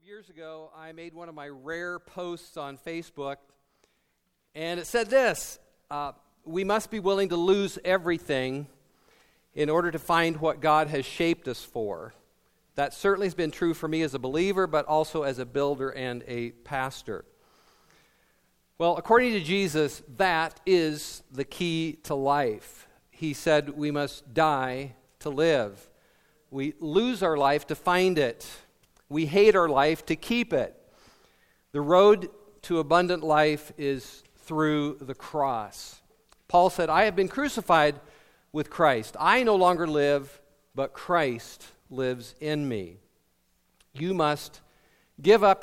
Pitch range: 140-180 Hz